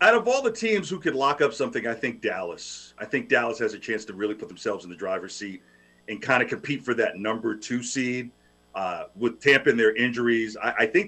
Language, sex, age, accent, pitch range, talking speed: English, male, 40-59, American, 105-130 Hz, 245 wpm